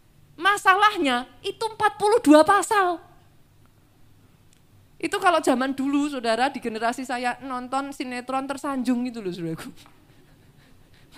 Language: Indonesian